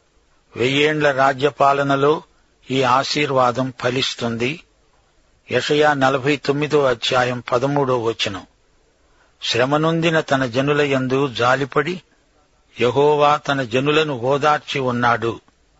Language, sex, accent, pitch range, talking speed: Telugu, male, native, 125-150 Hz, 80 wpm